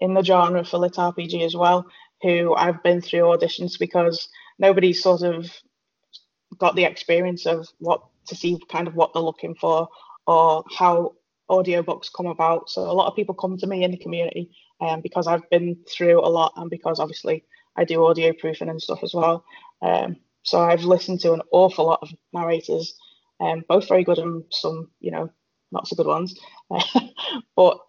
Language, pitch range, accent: English, 170-190 Hz, British